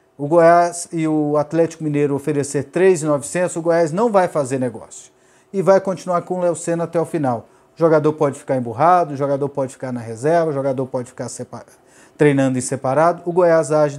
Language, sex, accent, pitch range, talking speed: Portuguese, male, Brazilian, 145-185 Hz, 195 wpm